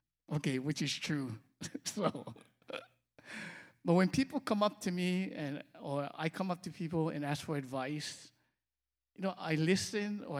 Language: English